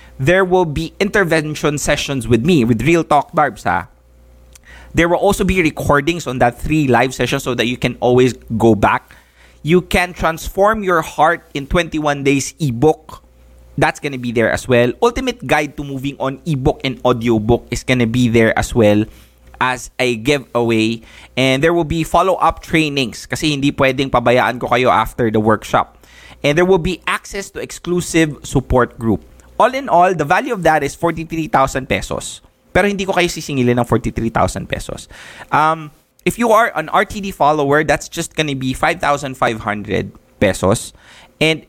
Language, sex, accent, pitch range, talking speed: English, male, Filipino, 120-160 Hz, 165 wpm